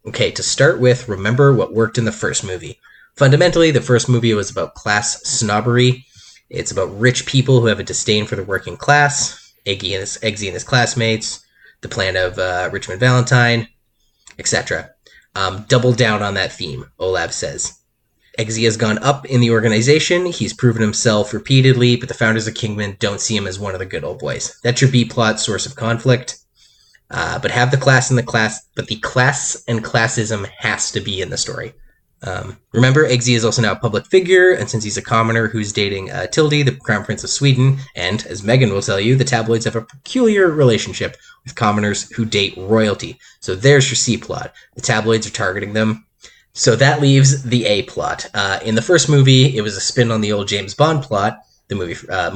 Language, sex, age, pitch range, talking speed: English, male, 20-39, 105-130 Hz, 200 wpm